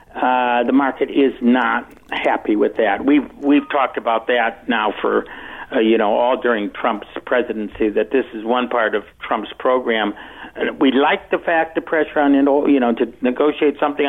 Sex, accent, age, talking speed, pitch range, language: male, American, 60-79, 180 wpm, 130-165 Hz, English